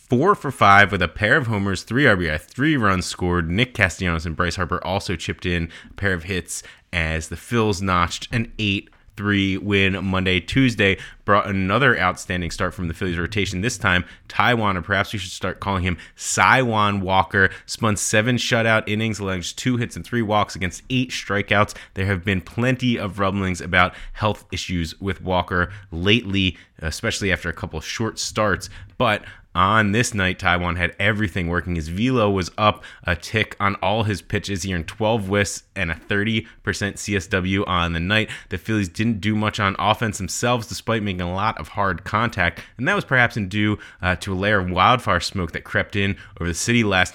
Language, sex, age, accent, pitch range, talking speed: English, male, 20-39, American, 90-110 Hz, 190 wpm